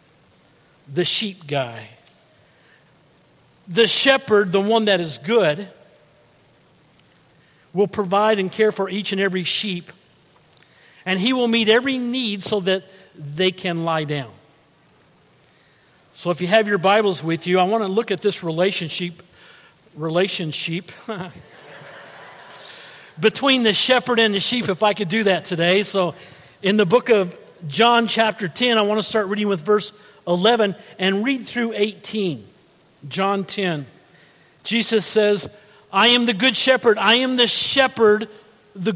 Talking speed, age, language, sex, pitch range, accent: 145 wpm, 50-69, English, male, 175-225 Hz, American